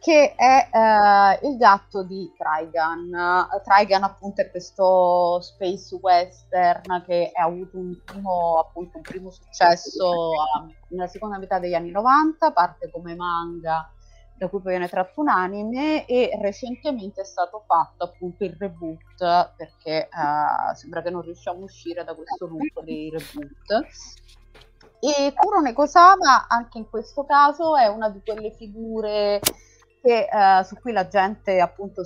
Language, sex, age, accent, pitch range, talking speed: Italian, female, 30-49, native, 175-235 Hz, 150 wpm